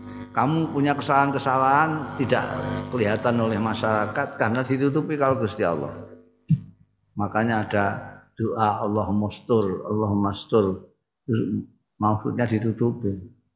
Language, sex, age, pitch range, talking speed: Indonesian, male, 50-69, 110-135 Hz, 95 wpm